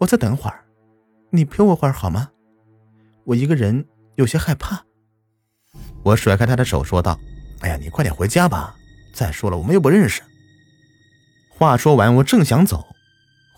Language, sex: Chinese, male